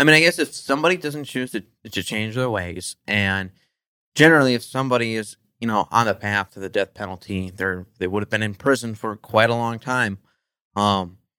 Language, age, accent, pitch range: English, 30-49, American, 105-135 Hz